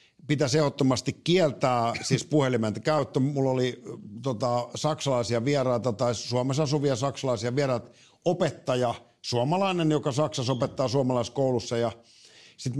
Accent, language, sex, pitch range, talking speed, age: native, Finnish, male, 125-160 Hz, 110 wpm, 50-69